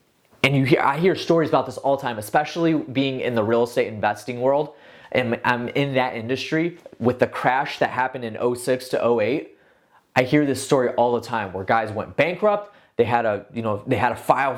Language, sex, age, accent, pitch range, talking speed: English, male, 20-39, American, 115-155 Hz, 220 wpm